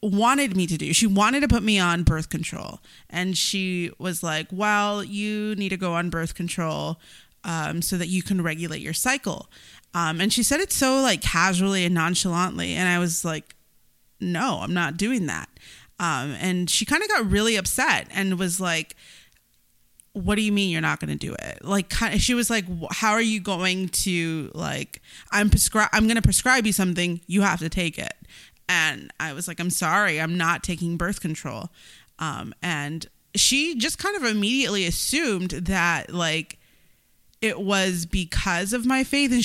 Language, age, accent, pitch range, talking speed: English, 20-39, American, 175-220 Hz, 185 wpm